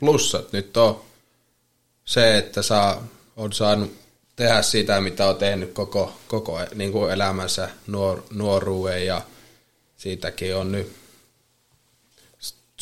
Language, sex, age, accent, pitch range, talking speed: Finnish, male, 20-39, native, 95-110 Hz, 105 wpm